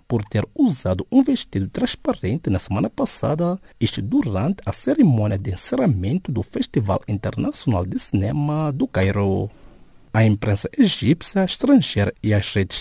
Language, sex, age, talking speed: English, male, 50-69, 140 wpm